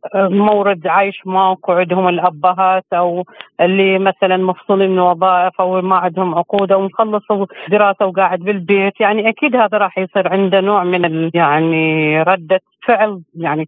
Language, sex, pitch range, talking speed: Arabic, female, 180-210 Hz, 135 wpm